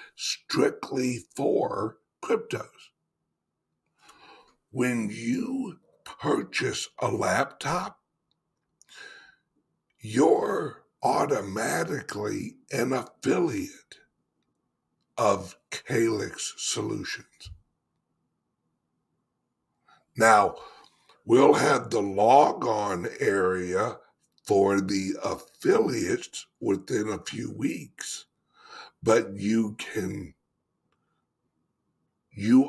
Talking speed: 60 wpm